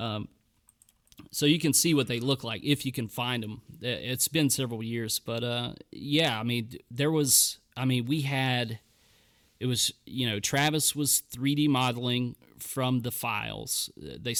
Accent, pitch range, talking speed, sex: American, 115-130 Hz, 170 wpm, male